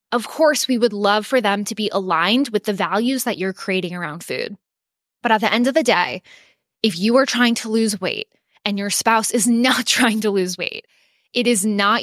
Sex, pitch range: female, 190-240 Hz